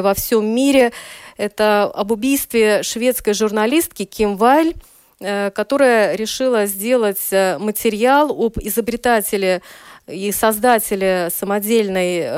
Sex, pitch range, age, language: female, 195-235 Hz, 20-39, Russian